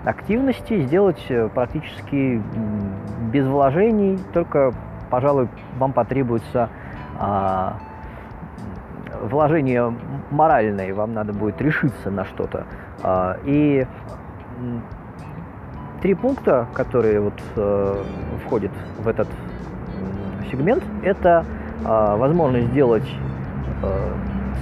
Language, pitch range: Russian, 100-150 Hz